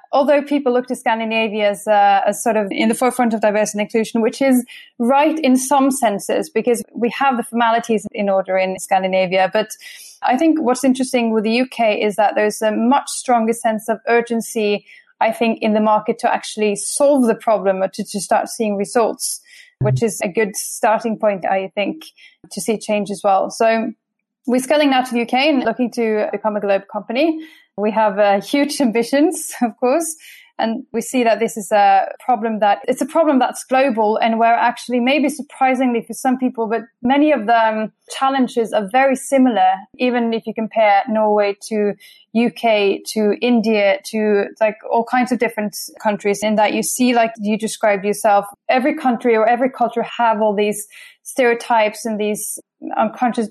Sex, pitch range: female, 210-255 Hz